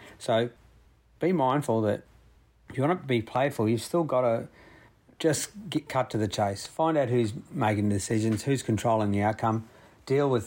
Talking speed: 180 wpm